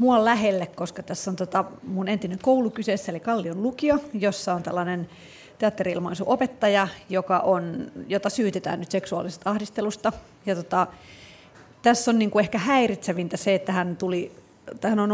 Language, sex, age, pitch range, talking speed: Finnish, female, 30-49, 180-215 Hz, 145 wpm